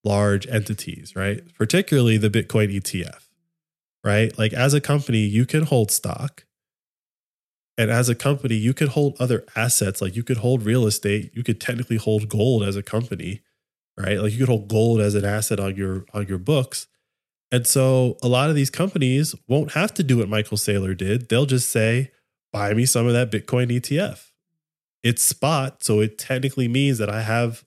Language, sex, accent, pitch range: English, male, American, 105-130 Hz